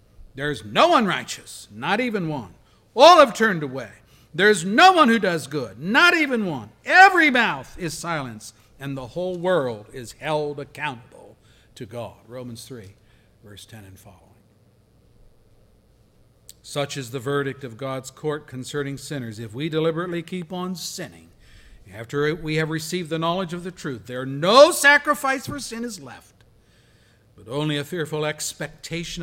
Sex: male